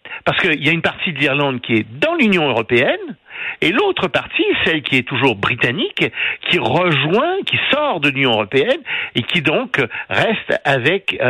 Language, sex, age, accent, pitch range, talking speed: French, male, 60-79, French, 120-165 Hz, 180 wpm